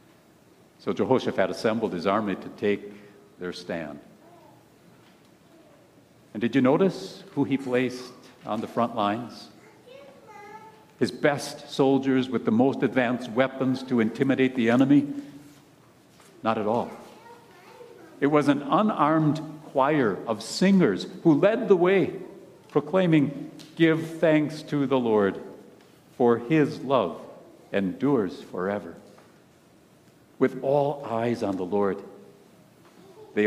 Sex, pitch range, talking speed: male, 120-160 Hz, 115 wpm